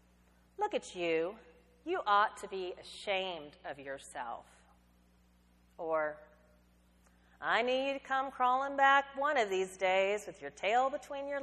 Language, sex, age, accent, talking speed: English, female, 40-59, American, 140 wpm